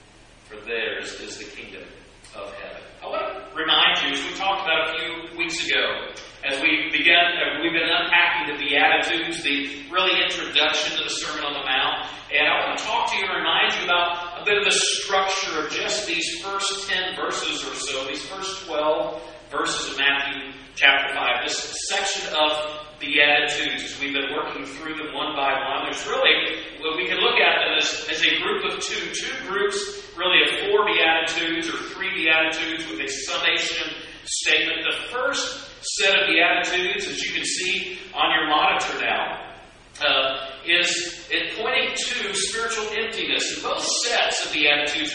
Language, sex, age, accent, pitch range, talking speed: English, male, 40-59, American, 150-205 Hz, 175 wpm